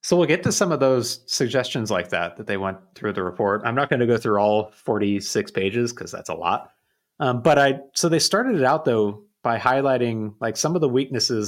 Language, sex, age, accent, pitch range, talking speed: English, male, 30-49, American, 110-140 Hz, 235 wpm